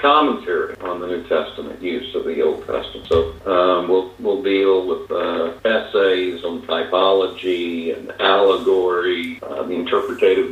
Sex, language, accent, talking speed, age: male, English, American, 145 wpm, 50-69